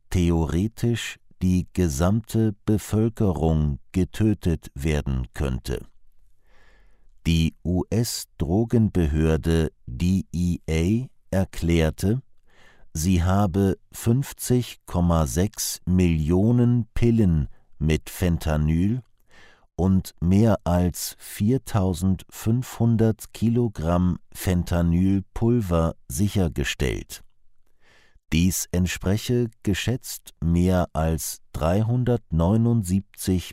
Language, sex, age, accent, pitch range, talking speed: German, male, 50-69, German, 80-105 Hz, 55 wpm